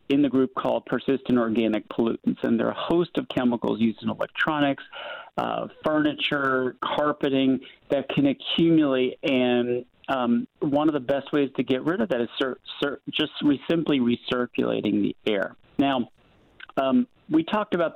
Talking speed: 155 wpm